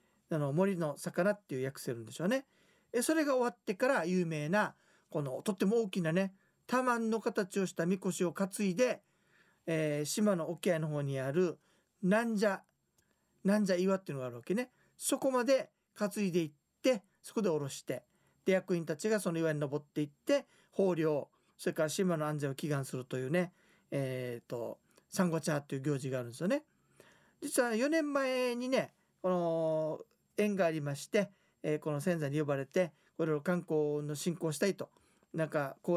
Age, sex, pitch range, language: 40-59, male, 150-215 Hz, Japanese